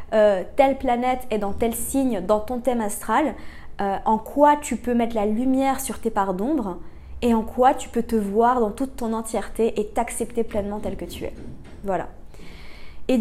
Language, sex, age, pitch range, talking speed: French, female, 20-39, 215-250 Hz, 195 wpm